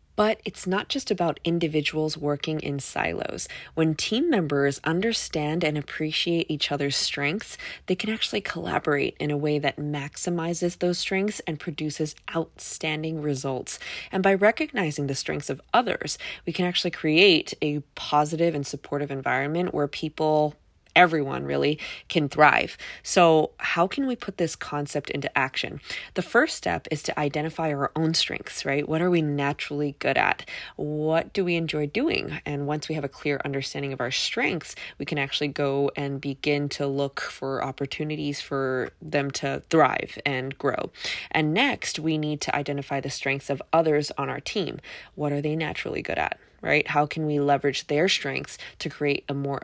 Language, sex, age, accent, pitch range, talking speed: English, female, 20-39, American, 140-165 Hz, 170 wpm